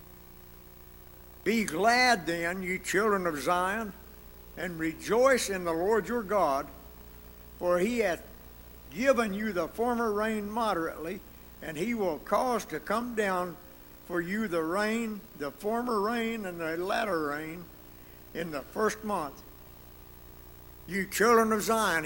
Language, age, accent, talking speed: English, 60-79, American, 135 wpm